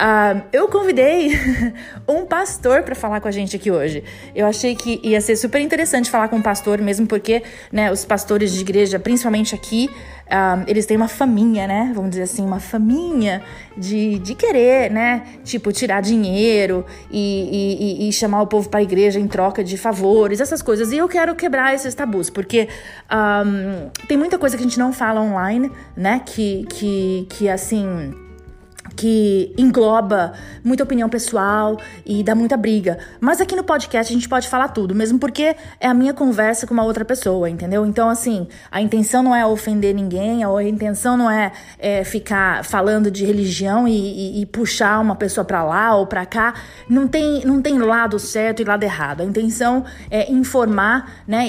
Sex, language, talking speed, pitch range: female, Portuguese, 185 wpm, 200-245 Hz